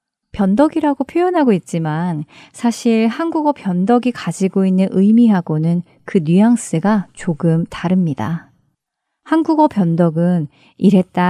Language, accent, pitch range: Korean, native, 170-245 Hz